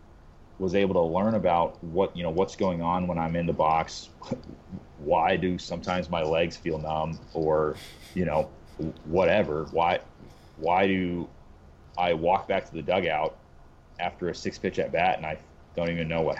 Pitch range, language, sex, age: 75-85 Hz, English, male, 30-49